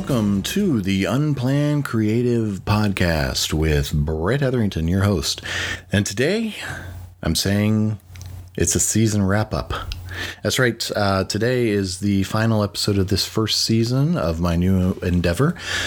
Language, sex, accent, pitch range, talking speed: English, male, American, 85-110 Hz, 130 wpm